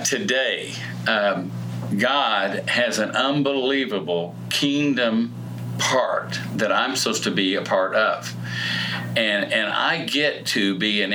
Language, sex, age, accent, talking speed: English, male, 50-69, American, 125 wpm